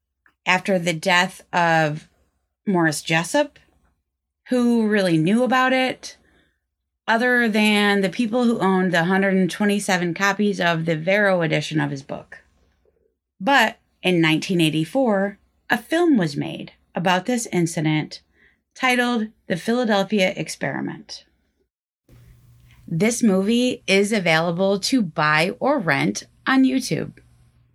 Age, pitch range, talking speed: 30-49, 155-230 Hz, 110 wpm